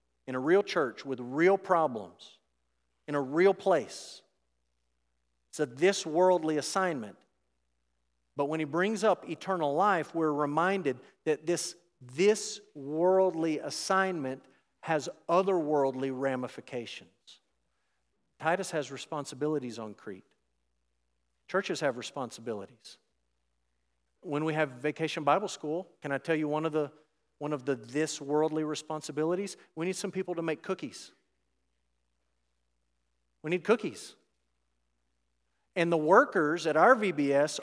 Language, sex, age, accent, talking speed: English, male, 50-69, American, 120 wpm